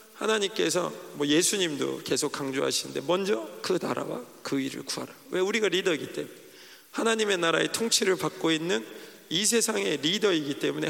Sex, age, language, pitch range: male, 40-59, Korean, 160-215 Hz